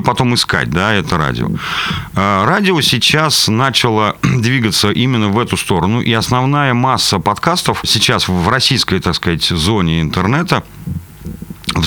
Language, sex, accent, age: Russian, male, native, 40-59